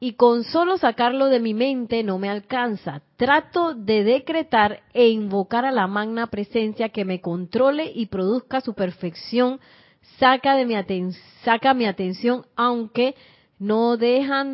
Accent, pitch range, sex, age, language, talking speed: American, 210-260 Hz, female, 30-49, Spanish, 135 wpm